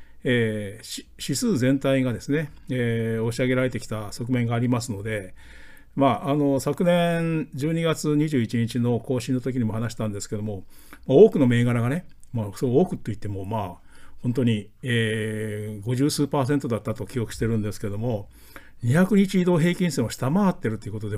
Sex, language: male, Japanese